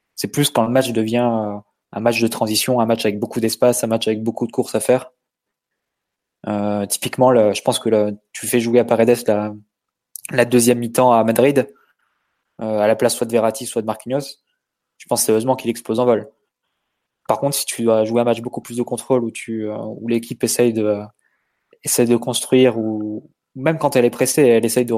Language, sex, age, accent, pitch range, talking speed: French, male, 20-39, French, 110-125 Hz, 215 wpm